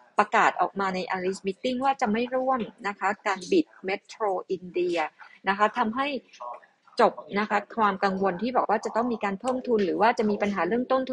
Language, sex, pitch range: Thai, female, 185-230 Hz